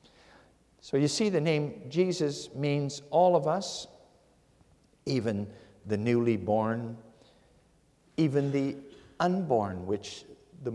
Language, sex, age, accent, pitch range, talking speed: English, male, 60-79, American, 115-150 Hz, 105 wpm